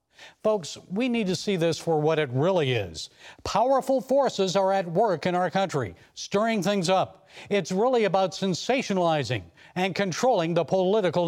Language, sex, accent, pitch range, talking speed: English, male, American, 150-195 Hz, 160 wpm